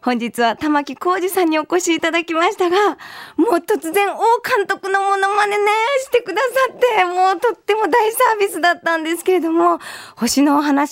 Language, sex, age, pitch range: Japanese, female, 20-39, 245-370 Hz